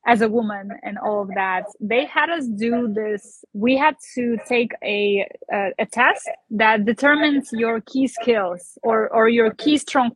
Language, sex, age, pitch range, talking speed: English, female, 20-39, 215-260 Hz, 175 wpm